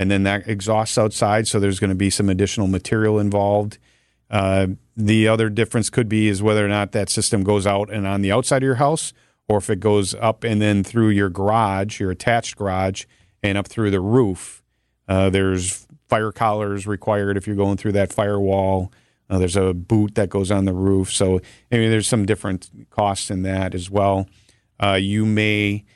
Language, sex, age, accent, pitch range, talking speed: English, male, 40-59, American, 95-115 Hz, 200 wpm